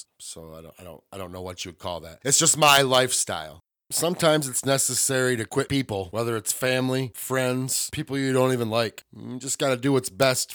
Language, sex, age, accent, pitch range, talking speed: English, male, 30-49, American, 110-130 Hz, 220 wpm